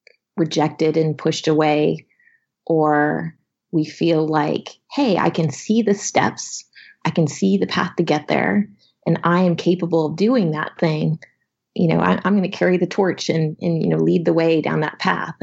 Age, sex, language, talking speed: 30-49, female, English, 185 wpm